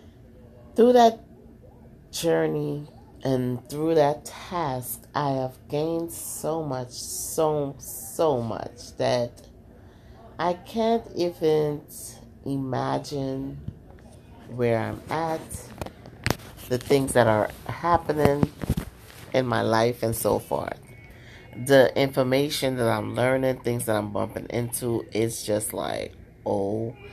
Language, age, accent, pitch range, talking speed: English, 30-49, American, 115-145 Hz, 105 wpm